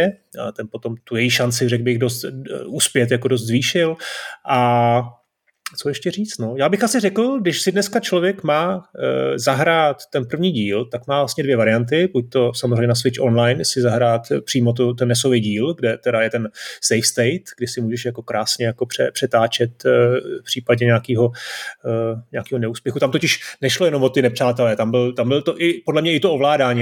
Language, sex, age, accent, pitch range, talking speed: Czech, male, 30-49, native, 120-140 Hz, 195 wpm